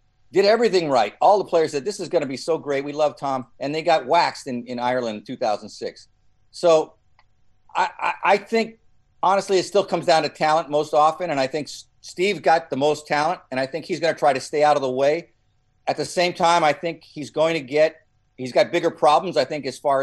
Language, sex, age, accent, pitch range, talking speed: English, male, 50-69, American, 130-170 Hz, 235 wpm